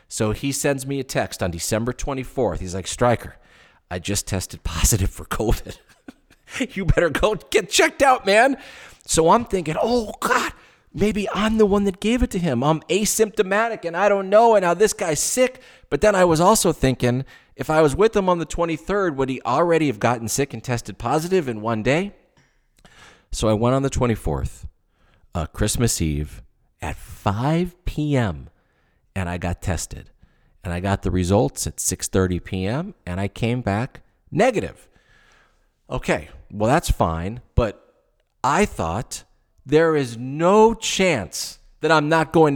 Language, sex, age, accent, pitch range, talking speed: English, male, 40-59, American, 110-180 Hz, 170 wpm